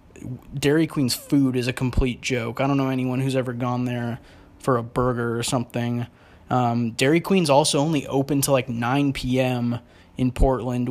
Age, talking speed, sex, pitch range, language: 20-39, 175 wpm, male, 125-145 Hz, English